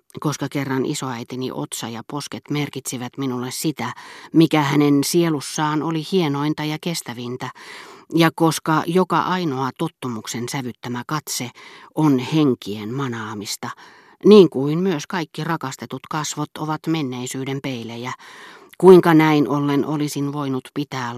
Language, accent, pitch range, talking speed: Finnish, native, 125-160 Hz, 115 wpm